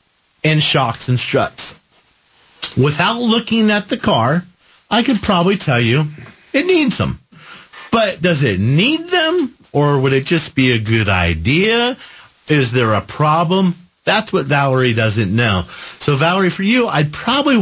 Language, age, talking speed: English, 50-69, 155 wpm